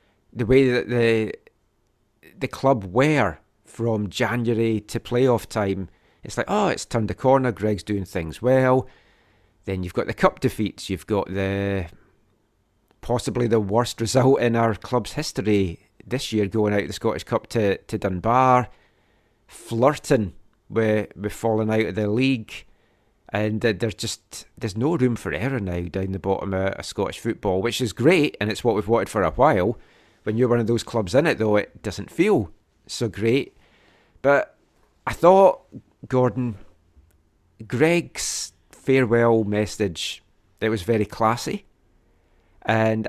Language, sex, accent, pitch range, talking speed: English, male, British, 100-120 Hz, 155 wpm